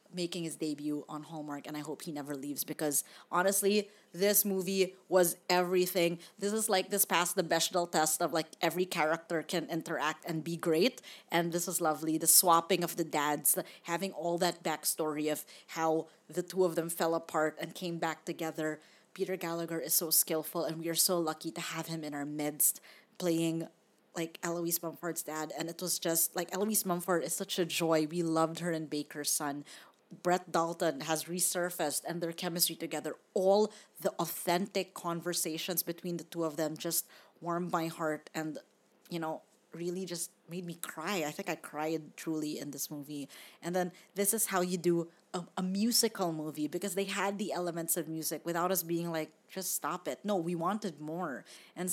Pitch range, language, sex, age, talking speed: 160-180 Hz, English, female, 20-39, 190 wpm